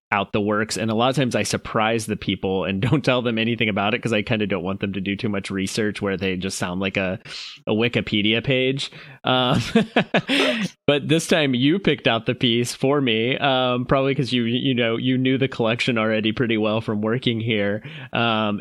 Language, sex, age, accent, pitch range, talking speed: English, male, 30-49, American, 100-125 Hz, 215 wpm